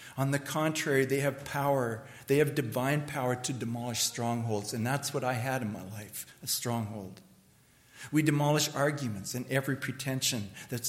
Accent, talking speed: American, 165 wpm